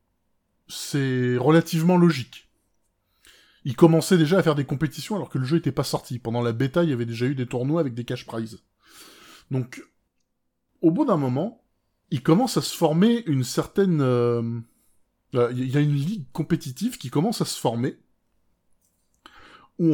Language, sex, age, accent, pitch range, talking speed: French, male, 20-39, French, 110-145 Hz, 170 wpm